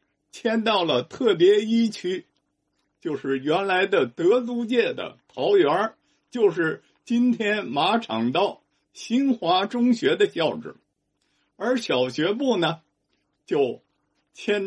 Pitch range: 165-270 Hz